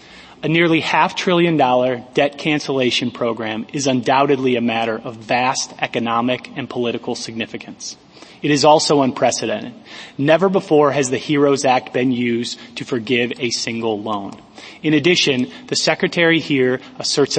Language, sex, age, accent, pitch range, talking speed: English, male, 30-49, American, 120-150 Hz, 135 wpm